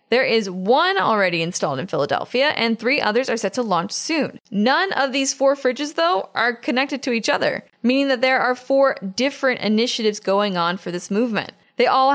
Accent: American